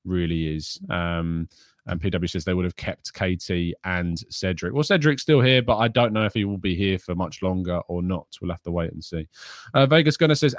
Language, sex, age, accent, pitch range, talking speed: English, male, 20-39, British, 90-115 Hz, 230 wpm